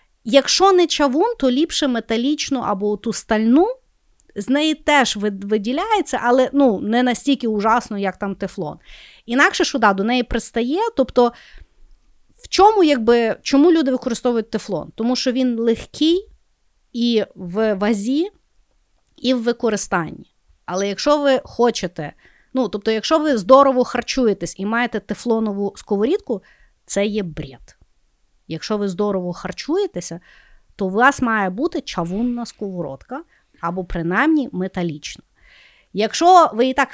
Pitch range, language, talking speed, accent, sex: 210-295 Hz, Ukrainian, 130 wpm, native, female